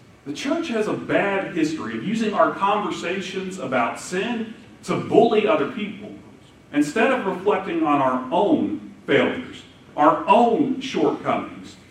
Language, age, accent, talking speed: English, 40-59, American, 130 wpm